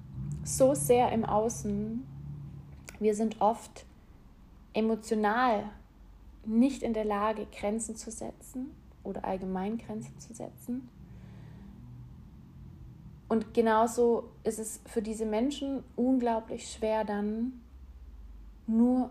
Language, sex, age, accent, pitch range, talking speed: German, female, 30-49, German, 200-230 Hz, 95 wpm